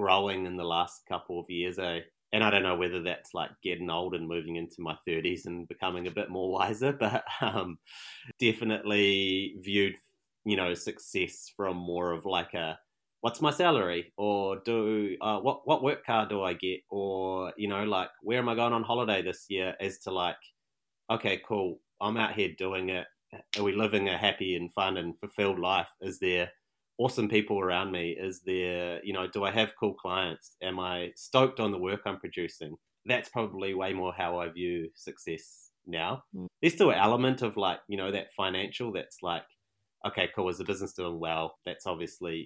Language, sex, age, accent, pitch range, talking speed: English, male, 30-49, Australian, 90-105 Hz, 195 wpm